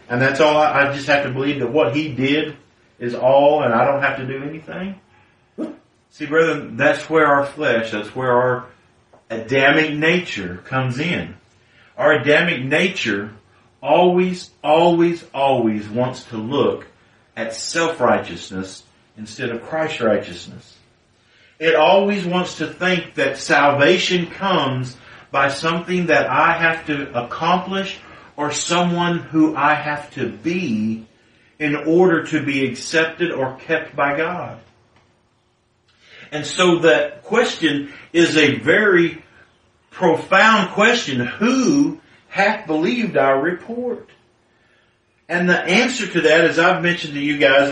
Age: 50-69